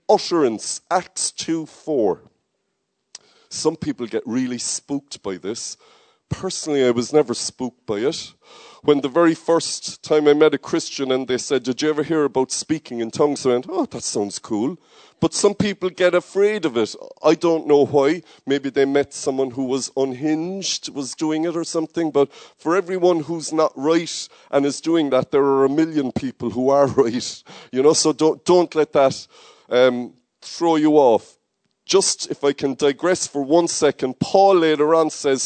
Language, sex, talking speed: English, male, 185 wpm